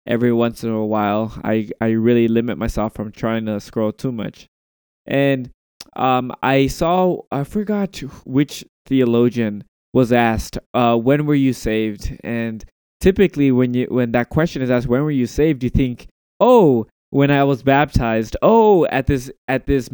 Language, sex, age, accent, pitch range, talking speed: English, male, 20-39, American, 115-140 Hz, 170 wpm